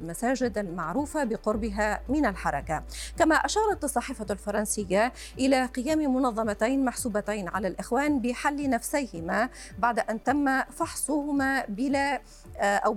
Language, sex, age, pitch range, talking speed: Arabic, female, 40-59, 205-270 Hz, 105 wpm